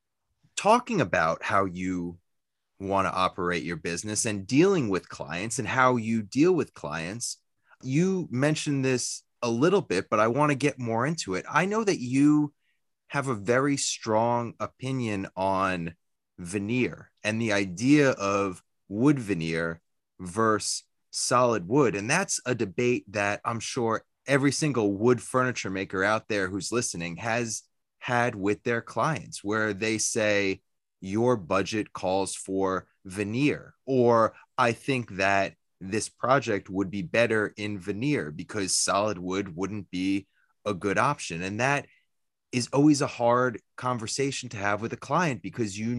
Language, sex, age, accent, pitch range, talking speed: English, male, 30-49, American, 95-125 Hz, 150 wpm